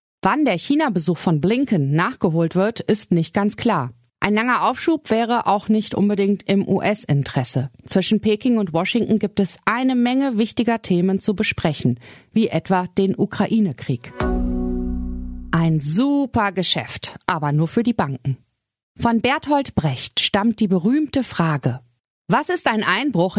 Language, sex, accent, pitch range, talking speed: German, female, German, 160-220 Hz, 140 wpm